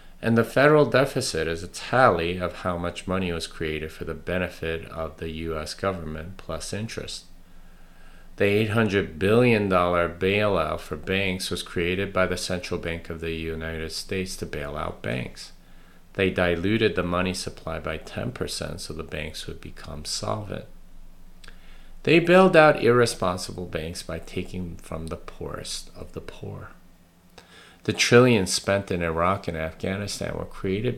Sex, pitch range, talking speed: male, 85-95 Hz, 150 wpm